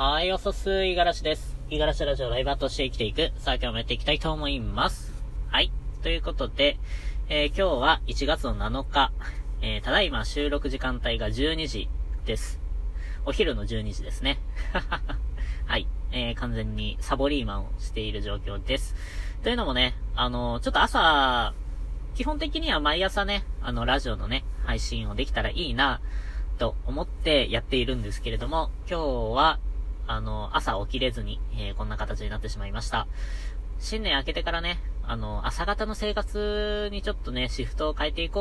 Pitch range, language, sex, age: 105-150 Hz, Japanese, female, 20-39